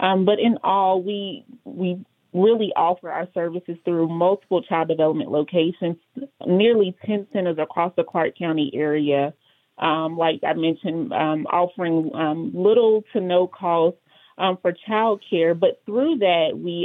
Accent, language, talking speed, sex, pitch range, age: American, English, 150 wpm, female, 165-195 Hz, 30-49